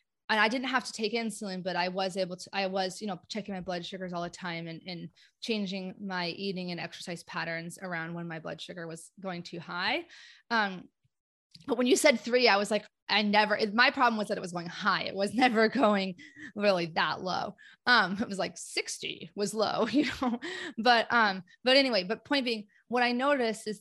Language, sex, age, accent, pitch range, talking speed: English, female, 20-39, American, 185-235 Hz, 220 wpm